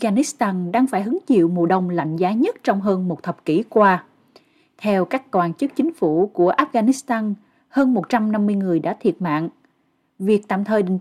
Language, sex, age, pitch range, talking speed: Vietnamese, female, 20-39, 190-270 Hz, 185 wpm